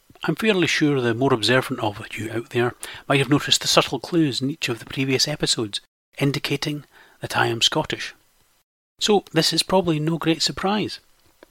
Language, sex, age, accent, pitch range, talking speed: English, male, 40-59, British, 120-155 Hz, 175 wpm